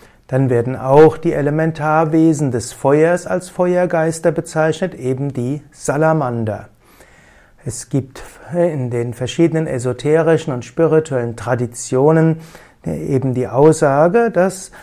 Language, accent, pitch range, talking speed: German, German, 125-160 Hz, 105 wpm